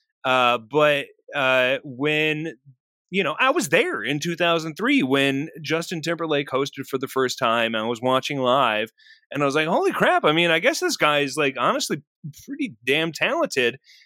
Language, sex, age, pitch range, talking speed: English, male, 30-49, 125-205 Hz, 175 wpm